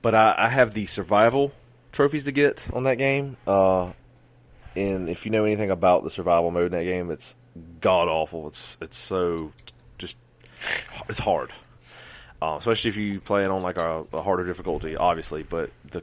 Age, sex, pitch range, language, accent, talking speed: 30-49, male, 85-115 Hz, English, American, 185 wpm